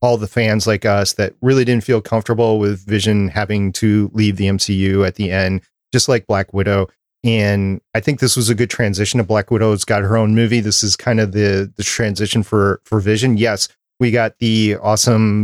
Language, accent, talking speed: English, American, 210 wpm